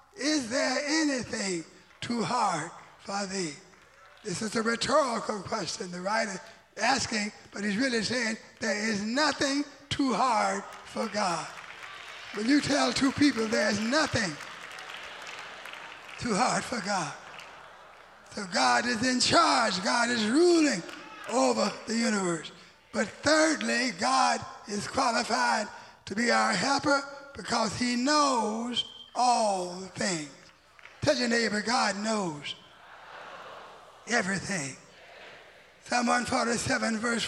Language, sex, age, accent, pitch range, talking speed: English, male, 20-39, American, 220-270 Hz, 115 wpm